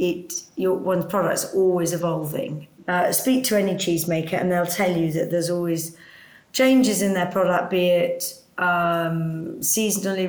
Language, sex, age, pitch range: English, female, 40-59, 165-185 Hz